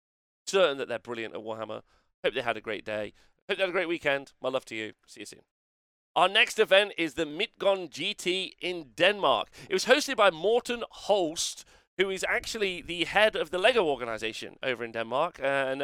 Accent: British